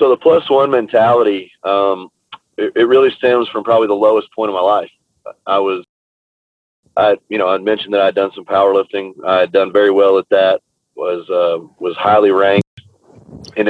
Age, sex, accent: 30-49, male, American